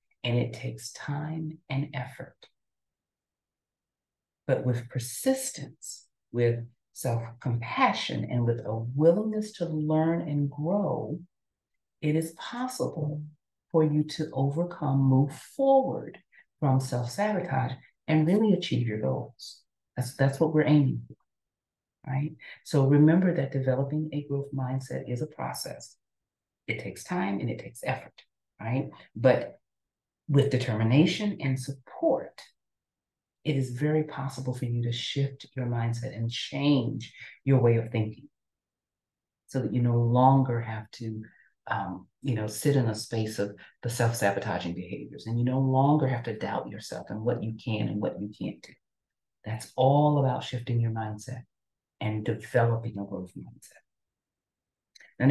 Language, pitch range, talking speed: English, 115-150 Hz, 135 wpm